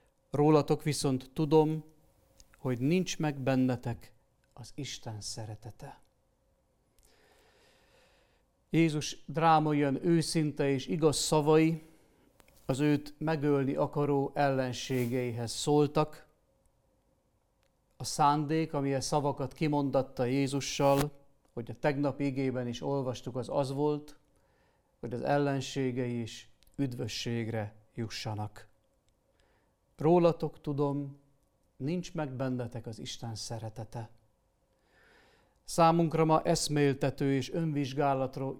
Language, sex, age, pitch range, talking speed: Hungarian, male, 50-69, 125-155 Hz, 85 wpm